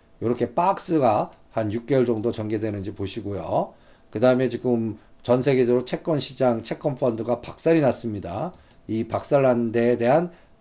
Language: Korean